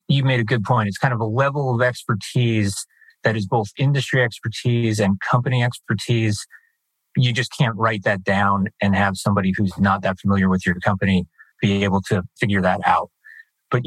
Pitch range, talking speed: 100-130 Hz, 185 wpm